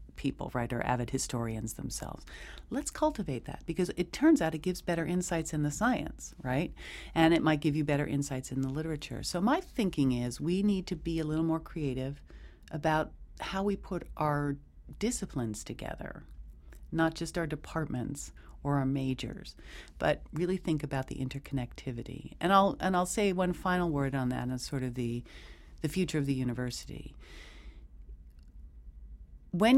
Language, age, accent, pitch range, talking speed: English, 50-69, American, 120-175 Hz, 165 wpm